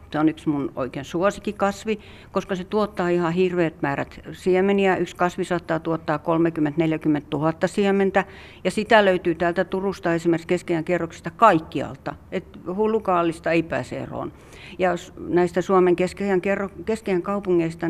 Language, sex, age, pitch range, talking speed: Finnish, female, 60-79, 170-190 Hz, 135 wpm